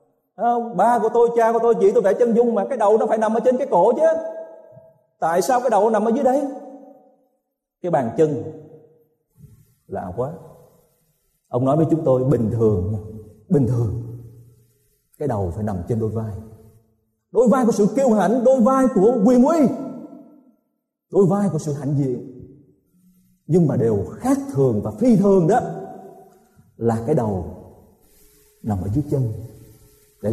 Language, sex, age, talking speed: Vietnamese, male, 30-49, 170 wpm